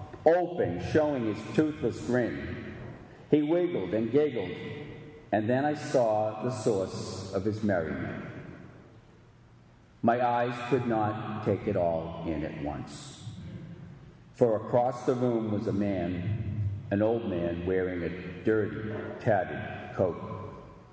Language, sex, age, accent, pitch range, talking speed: English, male, 50-69, American, 100-125 Hz, 125 wpm